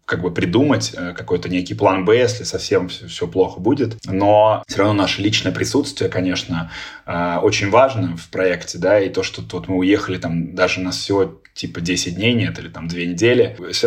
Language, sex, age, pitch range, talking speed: Russian, male, 20-39, 90-115 Hz, 195 wpm